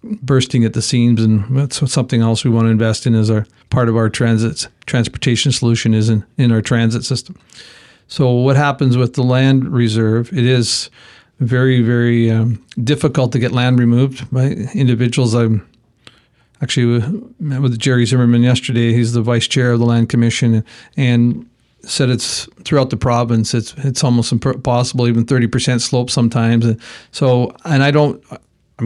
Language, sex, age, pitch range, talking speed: English, male, 40-59, 120-130 Hz, 170 wpm